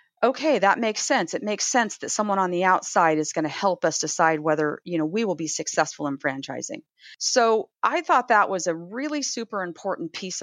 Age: 40-59